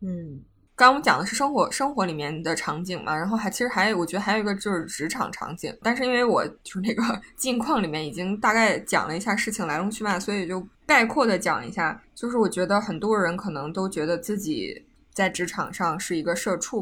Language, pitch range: Chinese, 170-215 Hz